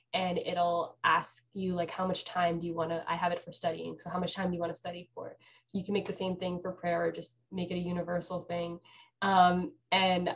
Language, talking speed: English, 255 wpm